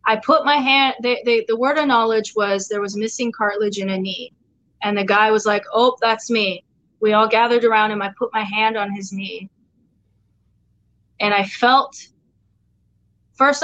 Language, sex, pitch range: English, female, 195-235 Hz